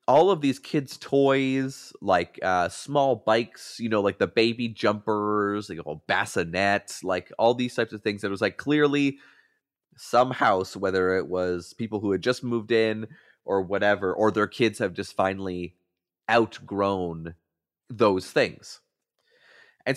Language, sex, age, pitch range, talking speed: English, male, 30-49, 95-125 Hz, 150 wpm